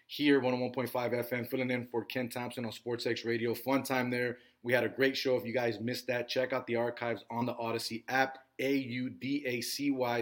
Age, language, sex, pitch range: 20-39, English, male, 115-130 Hz